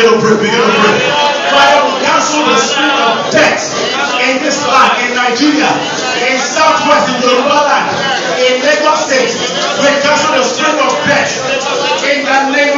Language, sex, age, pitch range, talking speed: English, male, 40-59, 250-285 Hz, 135 wpm